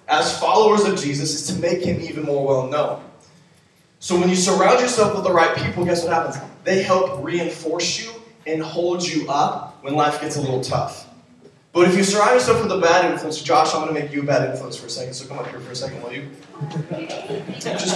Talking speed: 225 wpm